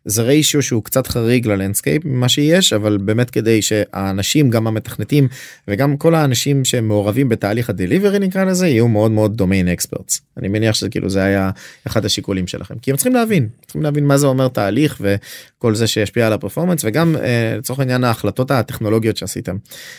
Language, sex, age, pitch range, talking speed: Hebrew, male, 20-39, 105-135 Hz, 170 wpm